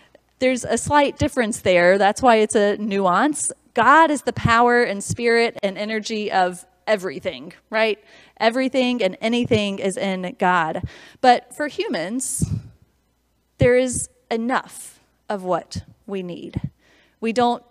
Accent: American